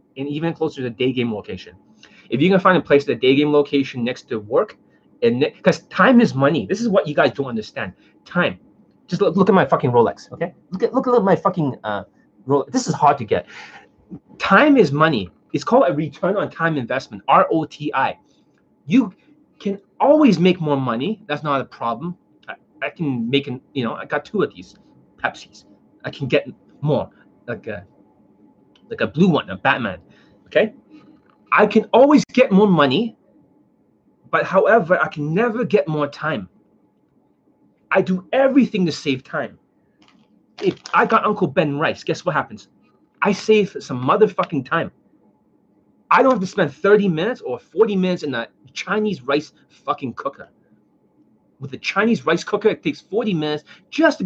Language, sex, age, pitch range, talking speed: English, male, 30-49, 140-210 Hz, 185 wpm